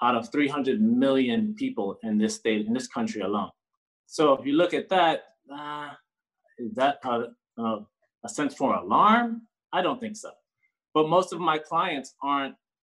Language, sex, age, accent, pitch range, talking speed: English, male, 30-49, American, 115-155 Hz, 170 wpm